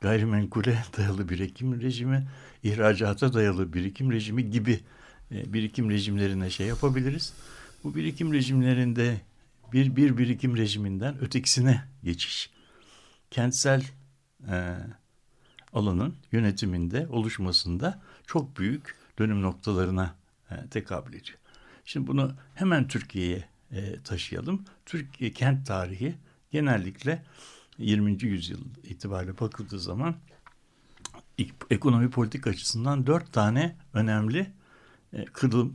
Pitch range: 105-135 Hz